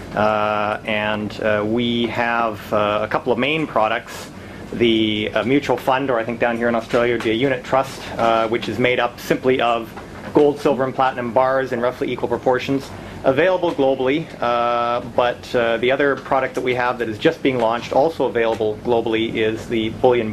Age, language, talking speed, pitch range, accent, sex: 30-49, English, 185 wpm, 110-130 Hz, American, male